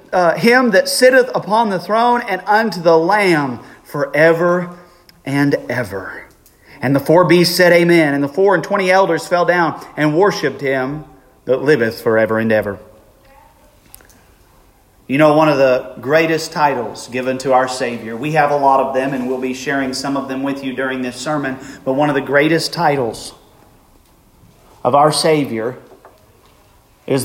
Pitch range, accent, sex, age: 135-180 Hz, American, male, 40-59